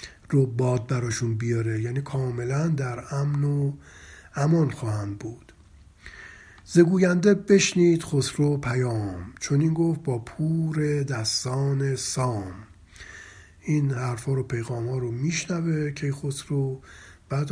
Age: 50-69